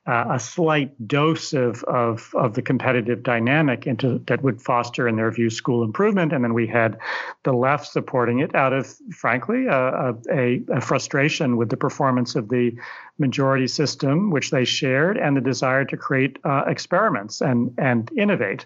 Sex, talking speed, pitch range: male, 175 wpm, 125-150 Hz